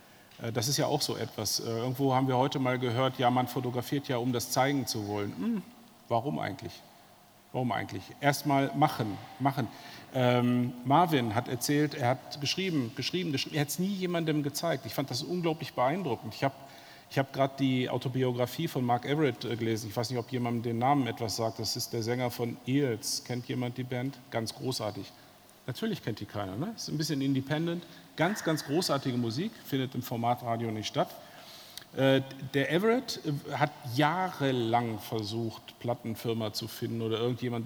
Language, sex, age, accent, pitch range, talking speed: German, male, 40-59, German, 120-145 Hz, 175 wpm